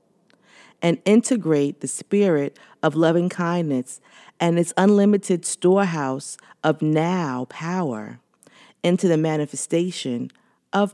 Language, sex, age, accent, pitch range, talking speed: English, female, 40-59, American, 145-185 Hz, 100 wpm